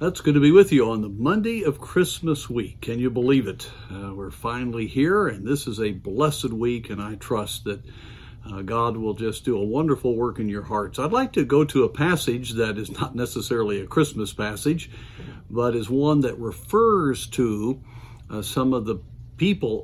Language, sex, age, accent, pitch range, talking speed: English, male, 50-69, American, 110-140 Hz, 200 wpm